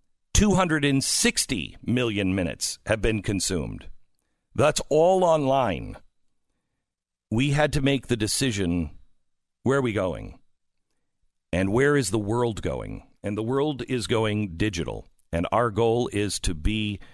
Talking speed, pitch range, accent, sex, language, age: 130 wpm, 100-140 Hz, American, male, English, 50-69